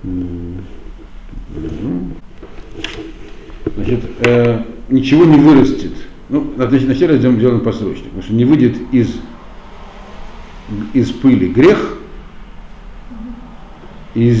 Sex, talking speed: male, 85 wpm